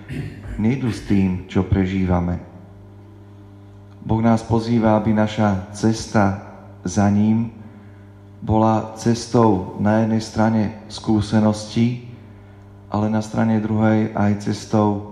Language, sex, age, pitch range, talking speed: Slovak, male, 40-59, 100-110 Hz, 100 wpm